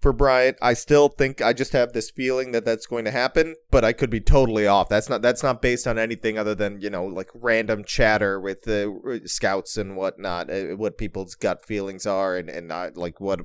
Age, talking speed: 30-49, 225 wpm